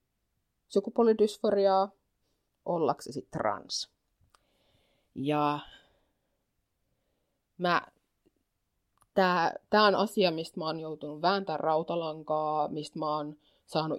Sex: female